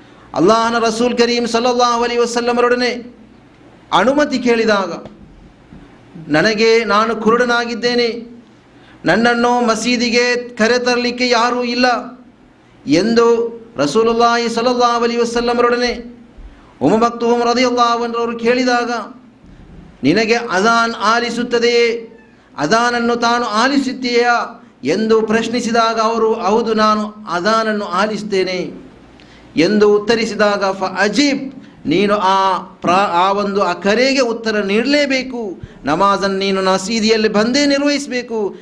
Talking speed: 85 wpm